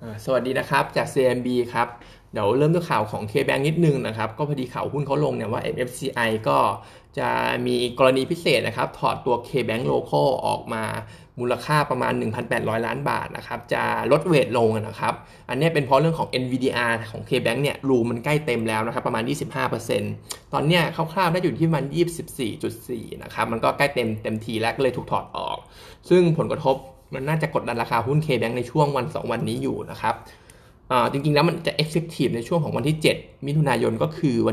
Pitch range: 120-155 Hz